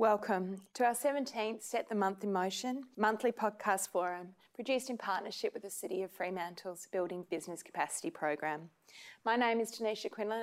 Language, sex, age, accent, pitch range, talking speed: English, female, 30-49, Australian, 185-235 Hz, 165 wpm